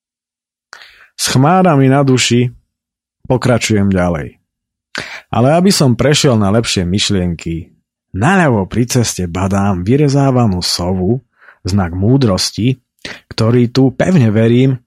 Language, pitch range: Slovak, 100-130 Hz